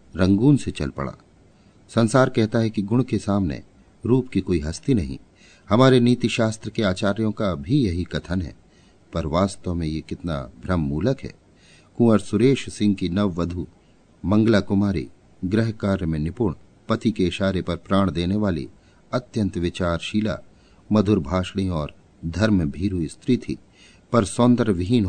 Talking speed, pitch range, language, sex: 150 wpm, 90-110 Hz, Hindi, male